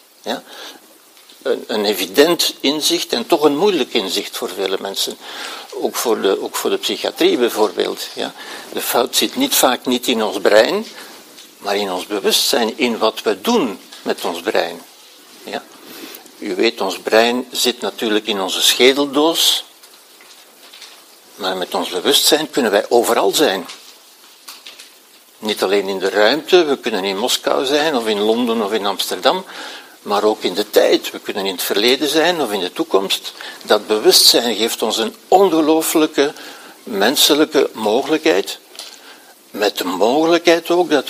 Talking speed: 145 wpm